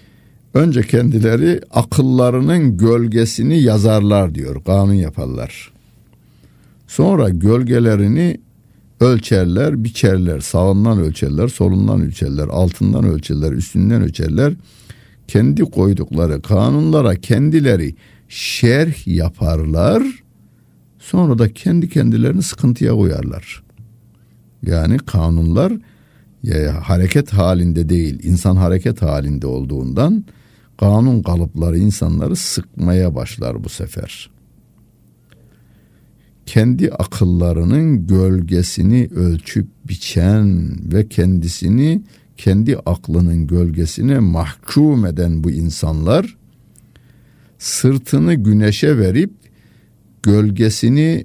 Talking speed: 80 wpm